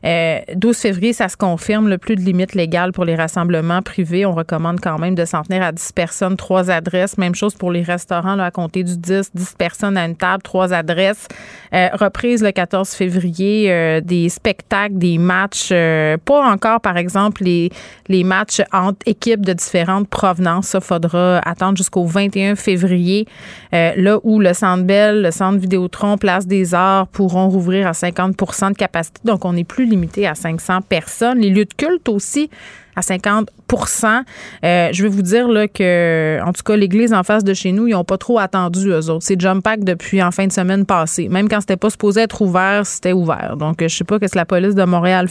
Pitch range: 180-215 Hz